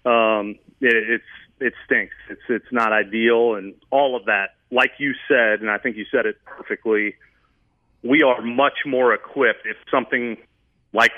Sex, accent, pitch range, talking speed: male, American, 105-120 Hz, 160 wpm